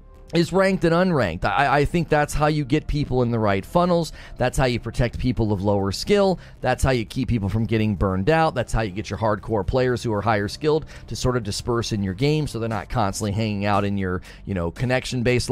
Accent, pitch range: American, 115-145 Hz